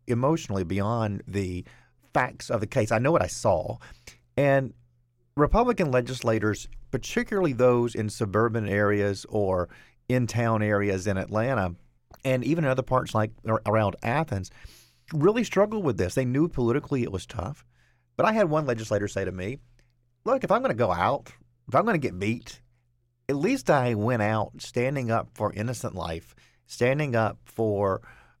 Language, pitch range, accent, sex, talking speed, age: English, 105-140 Hz, American, male, 165 wpm, 40-59